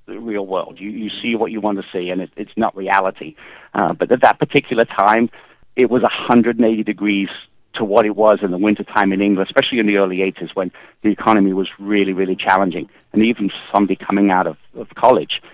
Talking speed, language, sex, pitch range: 215 wpm, English, male, 95-110 Hz